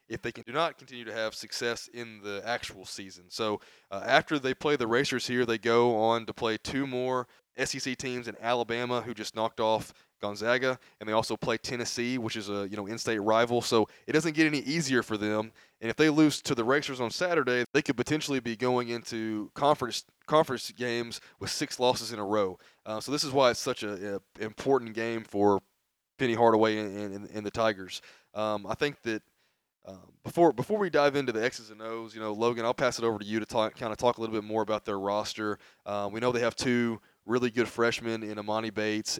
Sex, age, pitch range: male, 20-39, 110-125 Hz